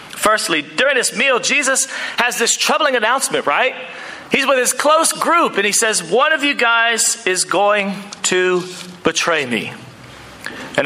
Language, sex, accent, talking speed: English, male, American, 155 wpm